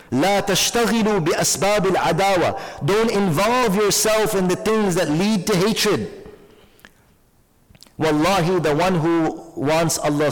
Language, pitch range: English, 150-205 Hz